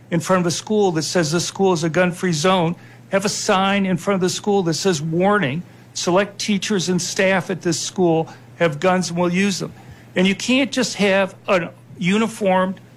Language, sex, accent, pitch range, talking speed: English, male, American, 175-205 Hz, 205 wpm